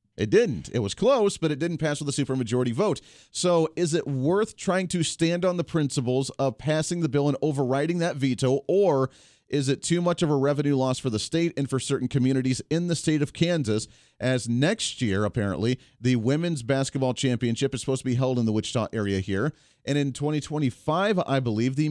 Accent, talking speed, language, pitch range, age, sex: American, 210 wpm, English, 125-165 Hz, 40-59, male